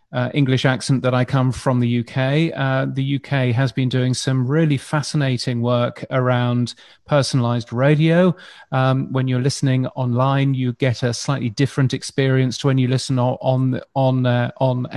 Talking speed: 155 wpm